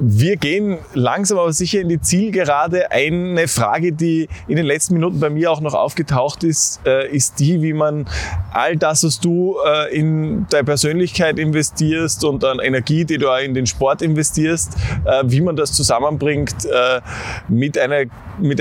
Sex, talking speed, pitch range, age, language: male, 160 wpm, 110-155 Hz, 20-39, German